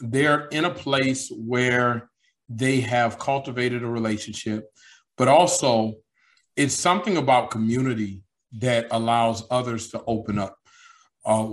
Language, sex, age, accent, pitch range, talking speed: English, male, 40-59, American, 115-140 Hz, 120 wpm